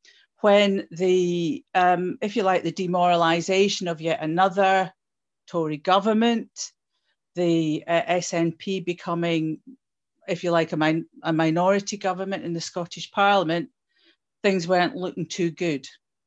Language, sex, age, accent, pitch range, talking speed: English, female, 40-59, British, 170-195 Hz, 120 wpm